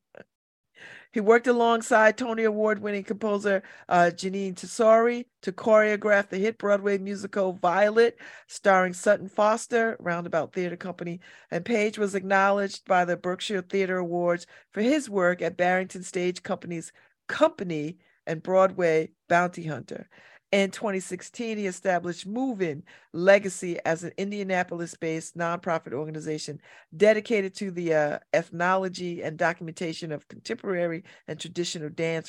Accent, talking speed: American, 125 wpm